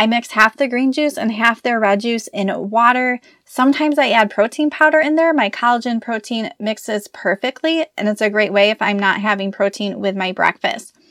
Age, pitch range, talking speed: 20-39, 205-265 Hz, 205 wpm